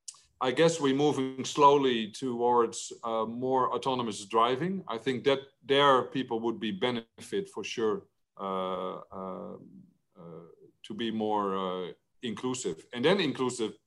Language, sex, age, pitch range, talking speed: French, male, 50-69, 110-130 Hz, 135 wpm